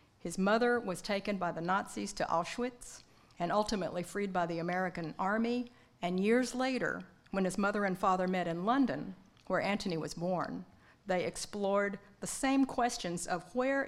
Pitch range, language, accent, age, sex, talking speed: 180-235 Hz, English, American, 50-69, female, 165 wpm